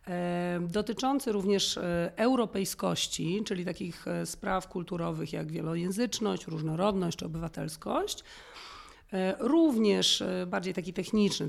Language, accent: Polish, native